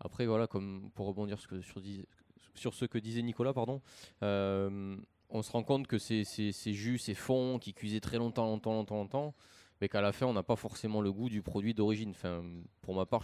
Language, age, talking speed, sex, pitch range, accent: French, 20-39, 215 wpm, male, 100-115 Hz, French